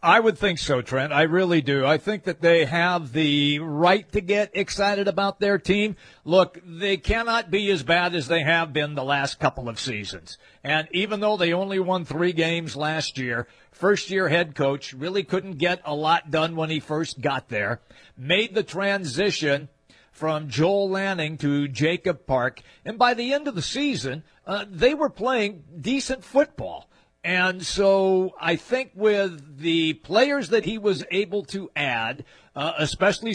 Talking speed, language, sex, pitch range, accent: 175 wpm, English, male, 155-205 Hz, American